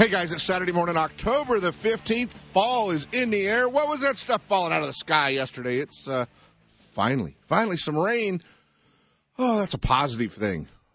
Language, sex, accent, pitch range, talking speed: English, male, American, 105-165 Hz, 185 wpm